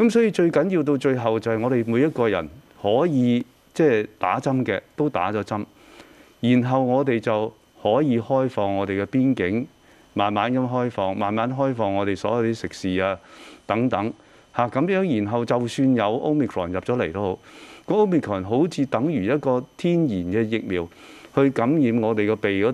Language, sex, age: English, male, 30-49